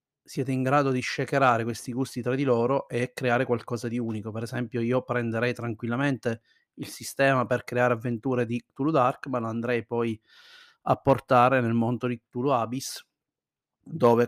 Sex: male